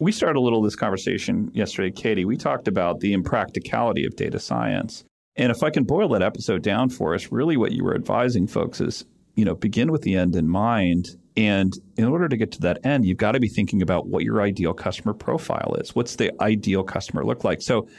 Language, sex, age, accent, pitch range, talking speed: English, male, 40-59, American, 90-125 Hz, 230 wpm